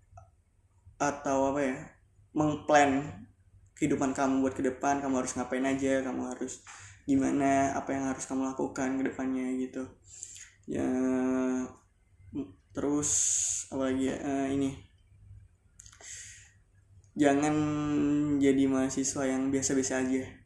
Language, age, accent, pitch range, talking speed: Indonesian, 20-39, native, 105-140 Hz, 100 wpm